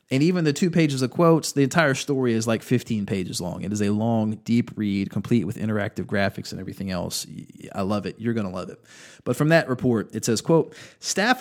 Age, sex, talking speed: 30-49, male, 230 wpm